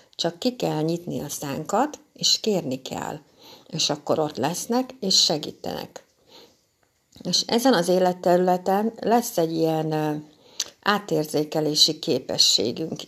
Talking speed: 110 wpm